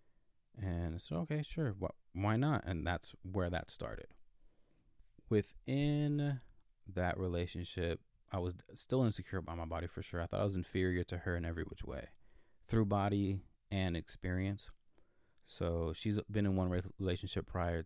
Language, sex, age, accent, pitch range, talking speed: English, male, 20-39, American, 85-100 Hz, 155 wpm